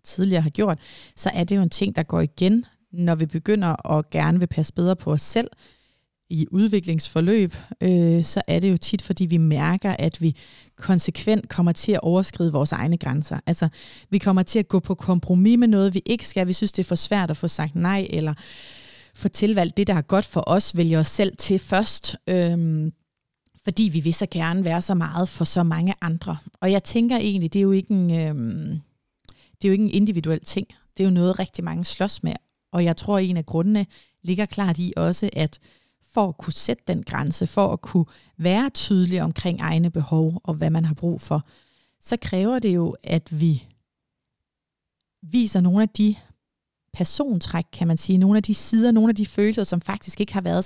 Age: 30-49